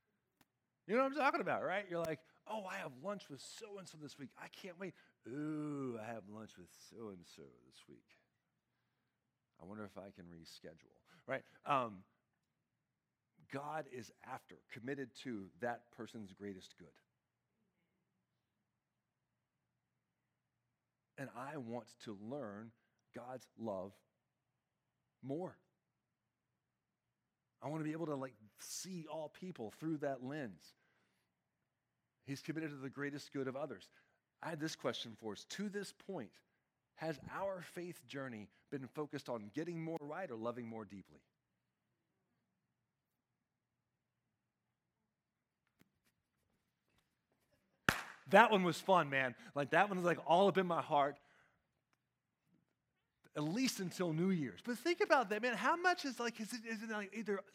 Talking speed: 140 wpm